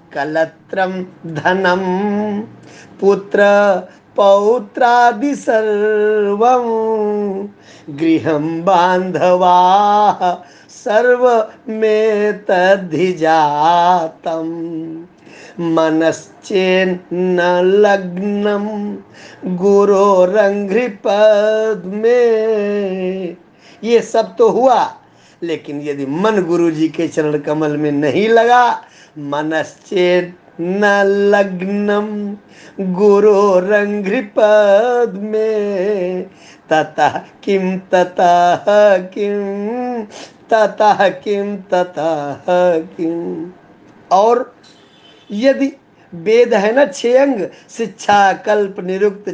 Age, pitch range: 50-69, 175-210 Hz